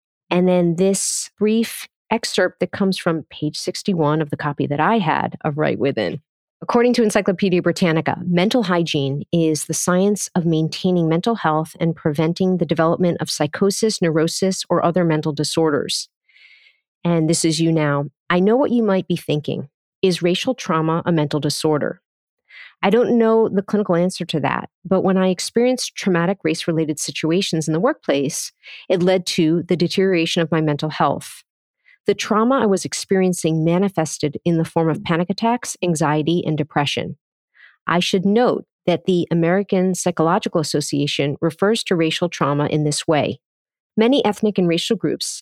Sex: female